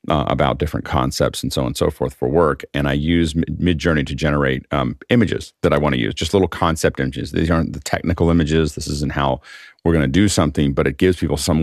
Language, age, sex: English, 40-59, male